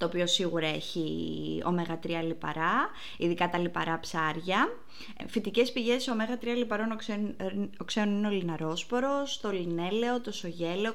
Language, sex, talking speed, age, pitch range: Greek, female, 135 wpm, 20-39, 170-230 Hz